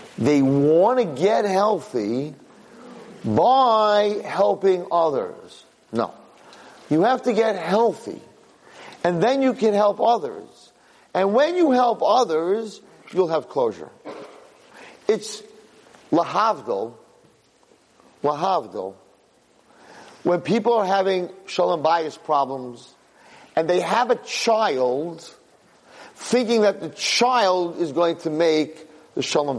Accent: American